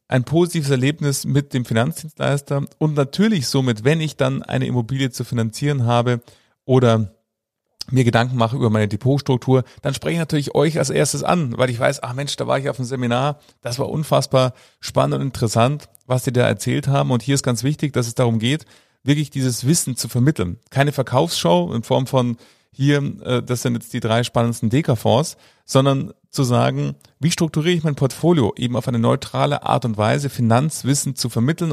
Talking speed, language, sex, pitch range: 185 wpm, German, male, 115-140 Hz